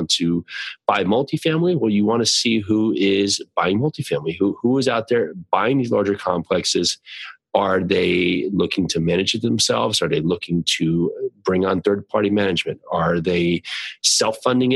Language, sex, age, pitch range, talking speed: English, male, 30-49, 90-115 Hz, 165 wpm